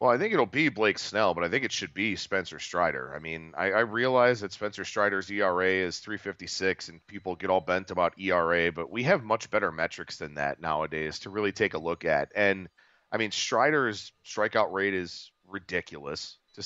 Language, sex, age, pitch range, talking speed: English, male, 40-59, 90-110 Hz, 205 wpm